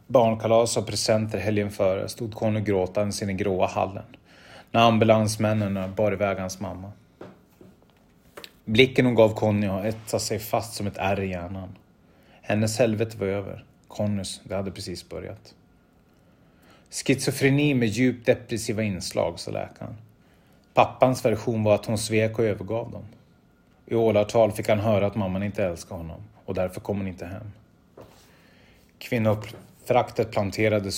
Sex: male